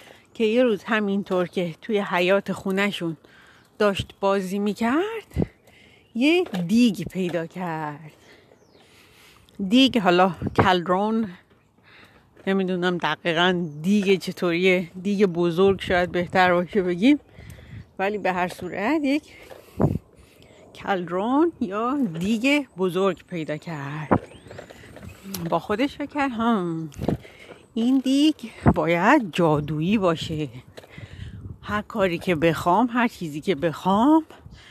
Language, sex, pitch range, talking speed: Persian, female, 170-230 Hz, 95 wpm